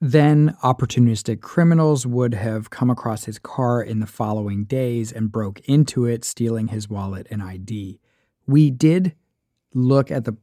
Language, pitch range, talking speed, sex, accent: English, 110-135 Hz, 155 wpm, male, American